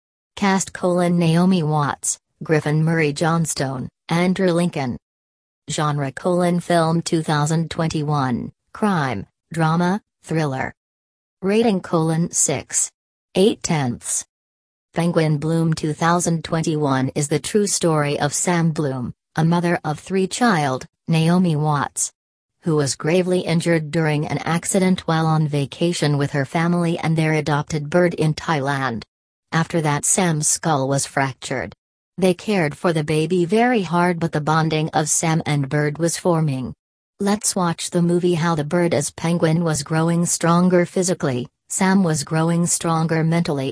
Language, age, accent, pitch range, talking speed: English, 40-59, American, 150-175 Hz, 135 wpm